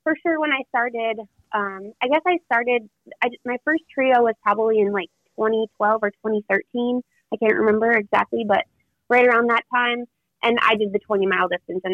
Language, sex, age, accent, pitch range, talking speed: English, female, 20-39, American, 185-235 Hz, 180 wpm